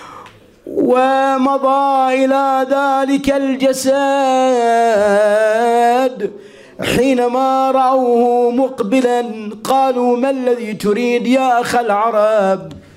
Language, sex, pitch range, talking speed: Arabic, male, 235-265 Hz, 65 wpm